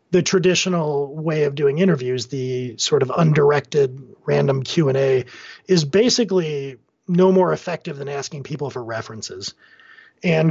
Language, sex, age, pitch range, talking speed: English, male, 40-59, 130-160 Hz, 130 wpm